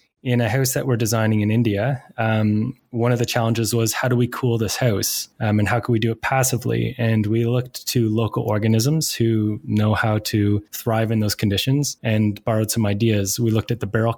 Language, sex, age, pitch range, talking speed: English, male, 20-39, 110-125 Hz, 215 wpm